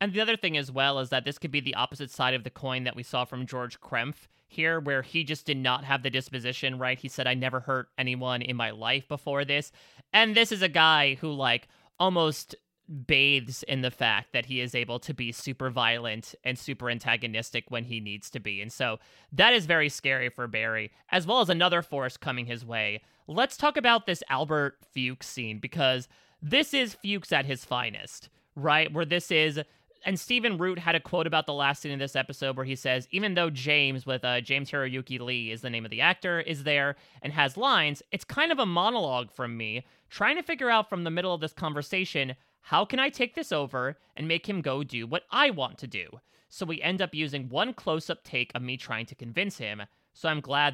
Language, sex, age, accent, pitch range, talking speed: English, male, 30-49, American, 125-165 Hz, 225 wpm